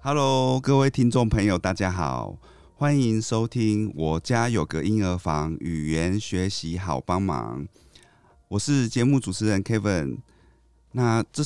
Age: 30-49